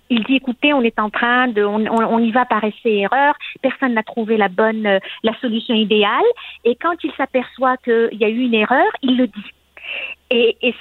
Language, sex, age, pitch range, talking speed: French, female, 50-69, 220-280 Hz, 215 wpm